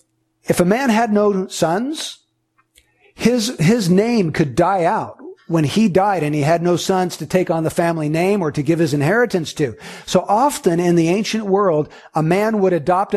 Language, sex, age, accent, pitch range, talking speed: English, male, 50-69, American, 155-205 Hz, 190 wpm